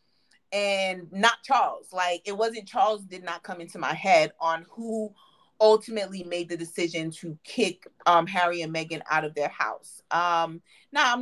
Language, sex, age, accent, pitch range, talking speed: English, female, 30-49, American, 155-200 Hz, 170 wpm